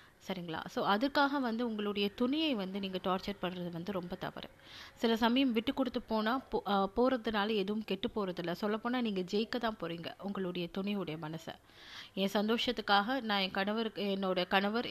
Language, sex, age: Tamil, female, 30-49